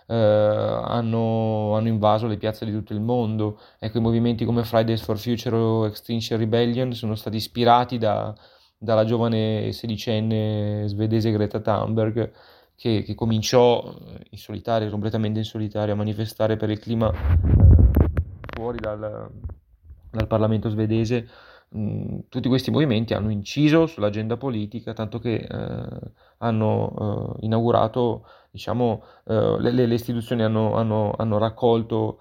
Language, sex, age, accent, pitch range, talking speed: Italian, male, 20-39, native, 105-115 Hz, 130 wpm